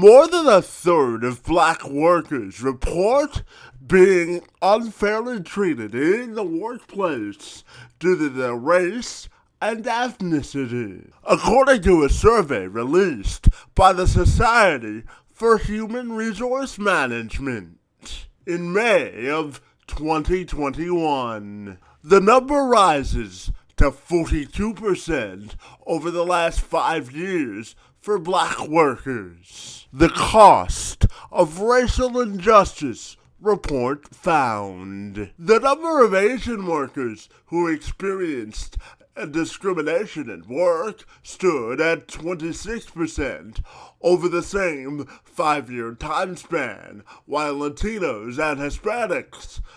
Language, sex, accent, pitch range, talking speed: English, male, American, 130-210 Hz, 100 wpm